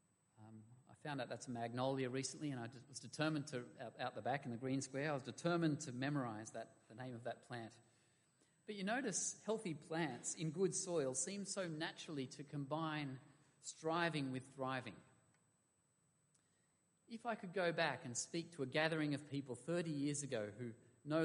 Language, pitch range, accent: English, 115-155 Hz, Australian